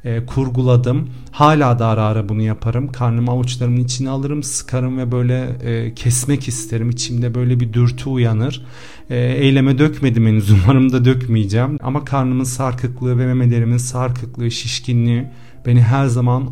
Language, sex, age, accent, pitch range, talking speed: Turkish, male, 40-59, native, 120-140 Hz, 140 wpm